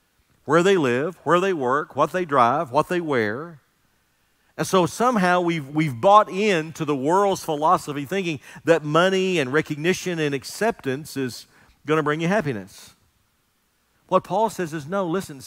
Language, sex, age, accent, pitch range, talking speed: English, male, 50-69, American, 130-175 Hz, 160 wpm